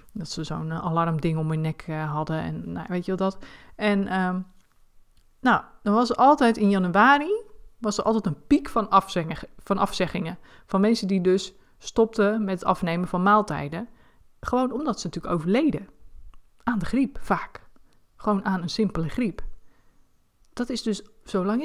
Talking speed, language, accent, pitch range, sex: 165 wpm, Dutch, Dutch, 170-215 Hz, female